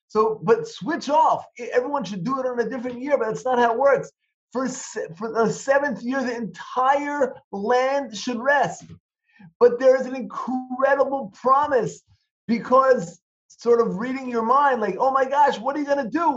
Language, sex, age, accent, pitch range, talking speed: English, male, 30-49, American, 190-265 Hz, 185 wpm